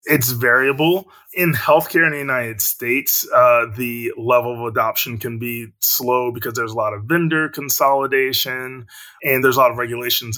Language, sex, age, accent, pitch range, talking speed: English, male, 20-39, American, 110-130 Hz, 170 wpm